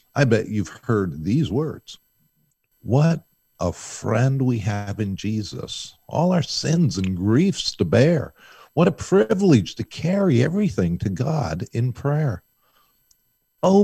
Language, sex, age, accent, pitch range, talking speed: English, male, 50-69, American, 105-165 Hz, 135 wpm